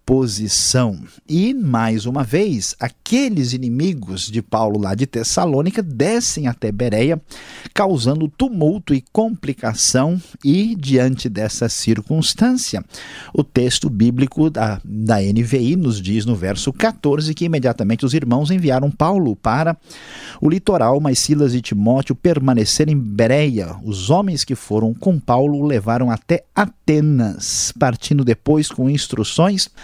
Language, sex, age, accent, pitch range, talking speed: Portuguese, male, 50-69, Brazilian, 115-155 Hz, 130 wpm